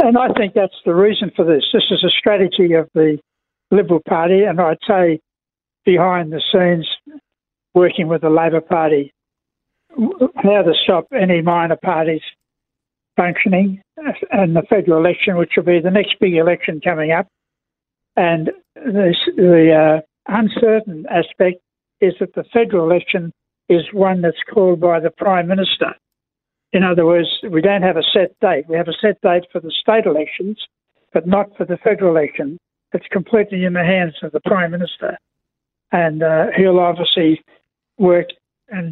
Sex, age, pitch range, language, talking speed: male, 60-79, 165-200 Hz, English, 160 wpm